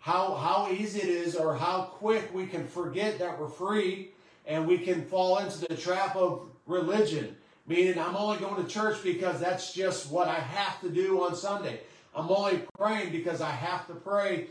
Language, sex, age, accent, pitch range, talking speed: English, male, 40-59, American, 170-205 Hz, 195 wpm